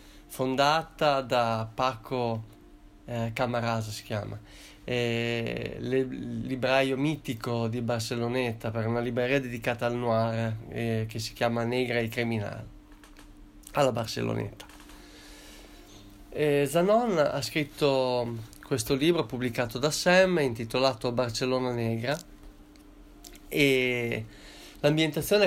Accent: native